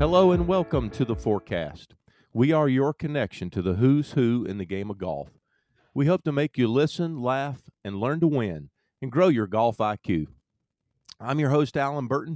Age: 50-69